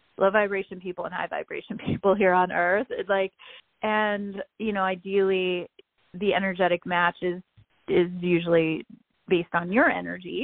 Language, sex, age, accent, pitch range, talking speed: English, female, 30-49, American, 180-215 Hz, 150 wpm